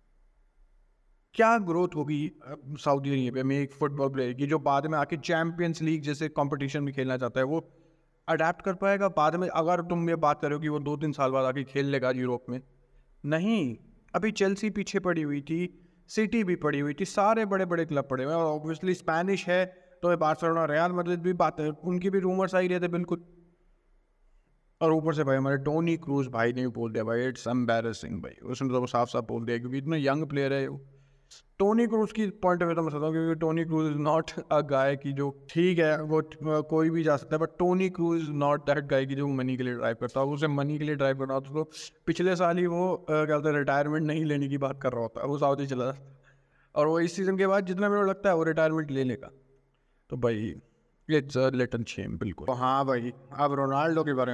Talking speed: 220 wpm